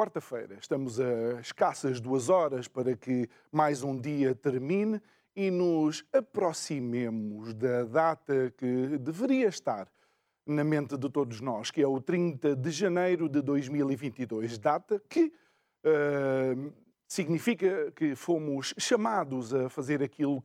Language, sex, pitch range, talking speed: Portuguese, male, 130-175 Hz, 125 wpm